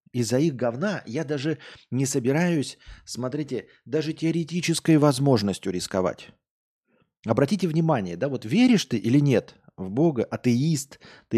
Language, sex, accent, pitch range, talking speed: Russian, male, native, 120-170 Hz, 125 wpm